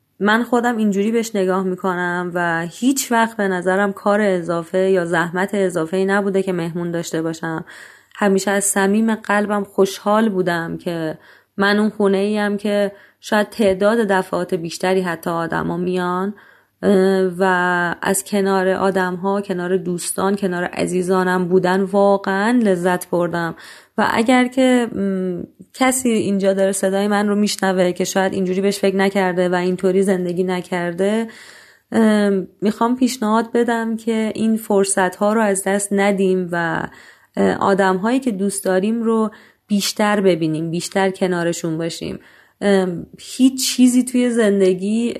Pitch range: 180-210 Hz